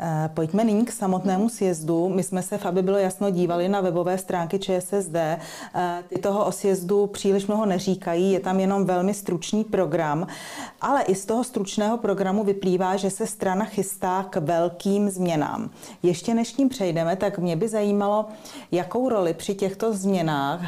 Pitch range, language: 175-200 Hz, Czech